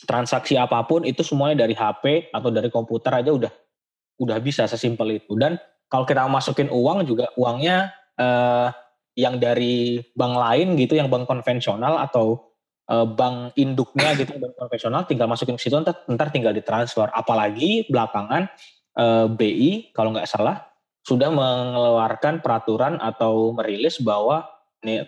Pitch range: 120-145 Hz